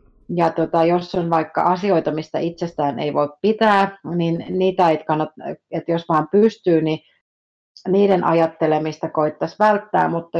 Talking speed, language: 145 wpm, Finnish